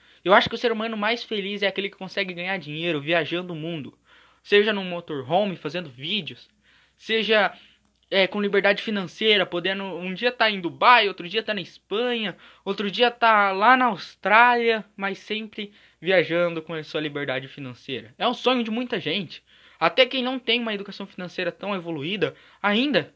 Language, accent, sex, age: Portuguese, Brazilian, male, 20-39